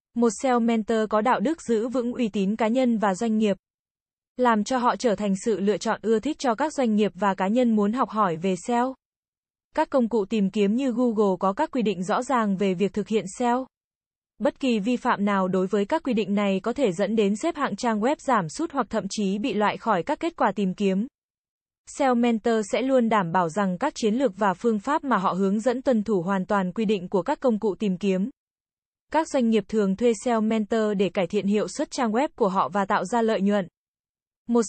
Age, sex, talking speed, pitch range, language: 20-39, female, 240 wpm, 205-250 Hz, Vietnamese